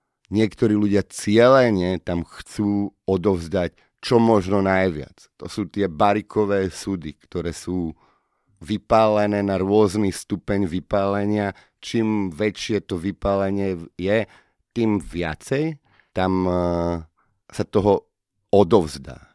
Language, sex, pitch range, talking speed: Slovak, male, 85-105 Hz, 100 wpm